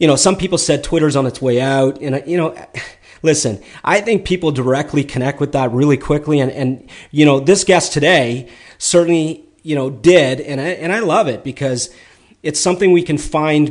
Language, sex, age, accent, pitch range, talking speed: English, male, 30-49, American, 125-155 Hz, 200 wpm